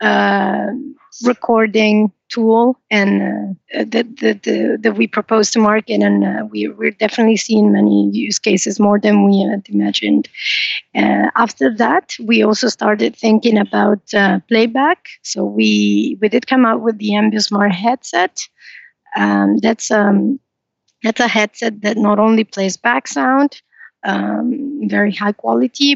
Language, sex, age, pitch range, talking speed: English, female, 30-49, 200-235 Hz, 140 wpm